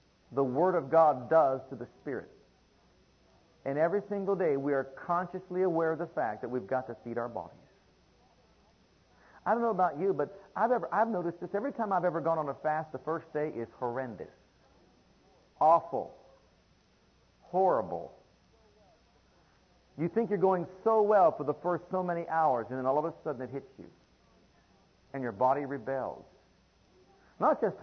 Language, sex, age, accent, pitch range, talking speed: English, male, 50-69, American, 140-195 Hz, 170 wpm